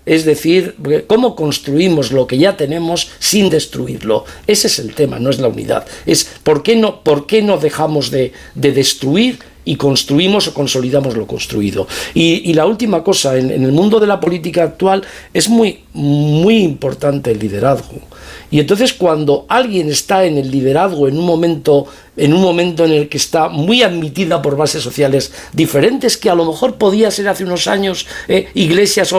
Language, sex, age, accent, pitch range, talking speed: Spanish, male, 50-69, Spanish, 140-185 Hz, 180 wpm